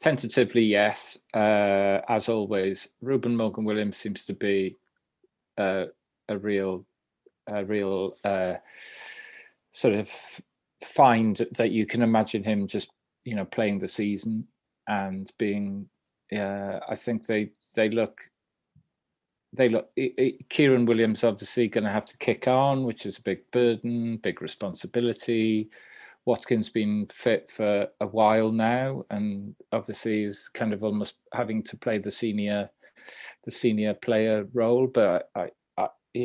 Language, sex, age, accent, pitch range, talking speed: English, male, 30-49, British, 100-120 Hz, 140 wpm